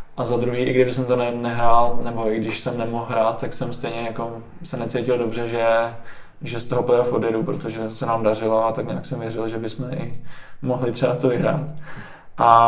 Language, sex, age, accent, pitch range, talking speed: Czech, male, 20-39, native, 120-135 Hz, 210 wpm